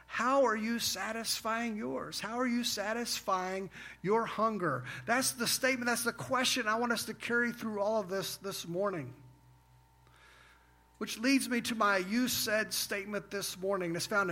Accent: American